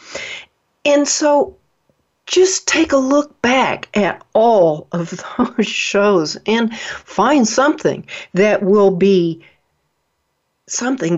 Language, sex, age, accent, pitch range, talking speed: English, female, 60-79, American, 180-265 Hz, 100 wpm